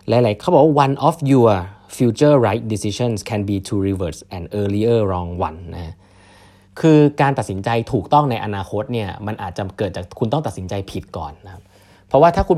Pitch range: 95-125 Hz